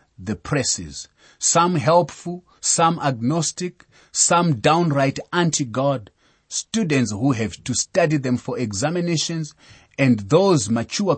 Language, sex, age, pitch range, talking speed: English, male, 30-49, 110-155 Hz, 105 wpm